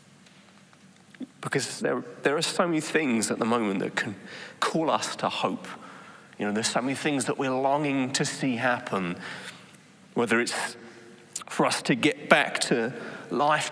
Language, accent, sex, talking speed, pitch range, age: English, British, male, 160 wpm, 115-150 Hz, 30-49